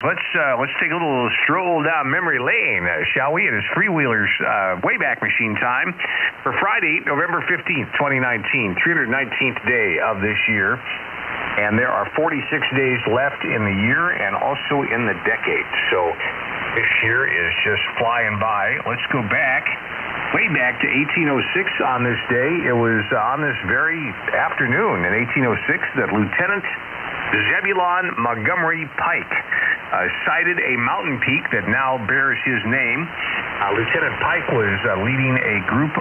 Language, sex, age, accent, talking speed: English, male, 50-69, American, 160 wpm